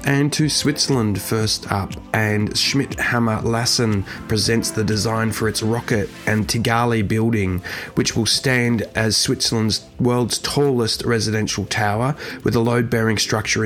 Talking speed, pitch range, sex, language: 140 wpm, 105-120 Hz, male, English